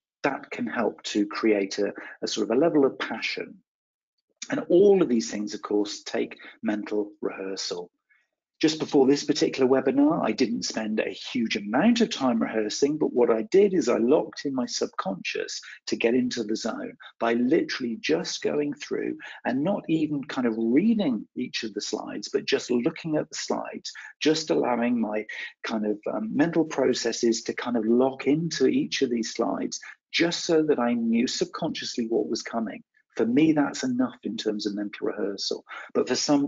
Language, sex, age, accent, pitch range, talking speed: English, male, 40-59, British, 115-180 Hz, 185 wpm